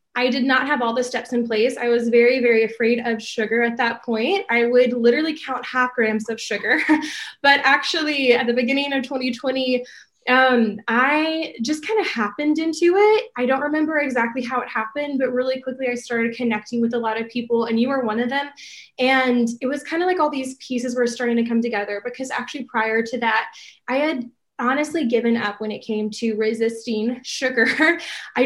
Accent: American